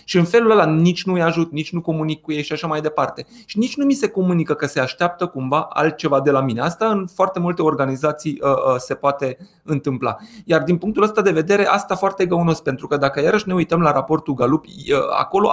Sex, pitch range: male, 140-185 Hz